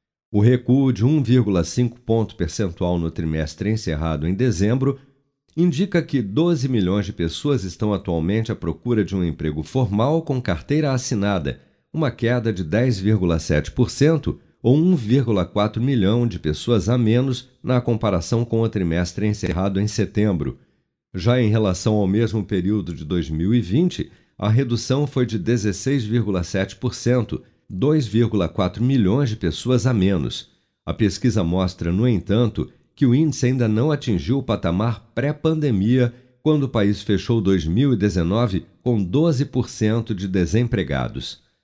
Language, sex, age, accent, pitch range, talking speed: Portuguese, male, 50-69, Brazilian, 95-130 Hz, 130 wpm